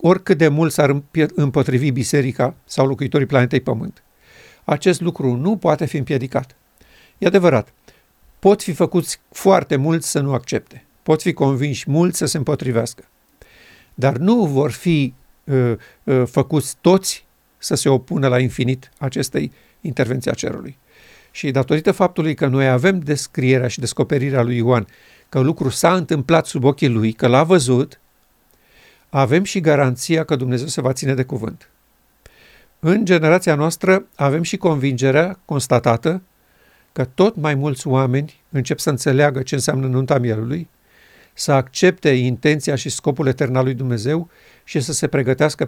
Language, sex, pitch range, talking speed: Romanian, male, 130-165 Hz, 150 wpm